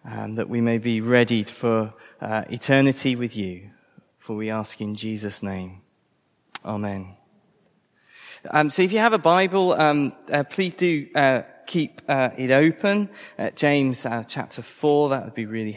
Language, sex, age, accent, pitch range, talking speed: English, male, 20-39, British, 125-165 Hz, 160 wpm